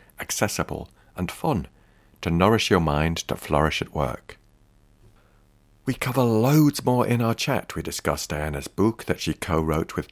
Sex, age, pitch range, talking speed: male, 50-69, 80-110 Hz, 155 wpm